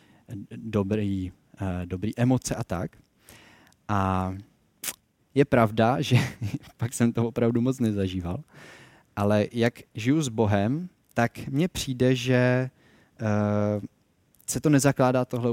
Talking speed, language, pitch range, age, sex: 105 wpm, Czech, 100-120 Hz, 30-49, male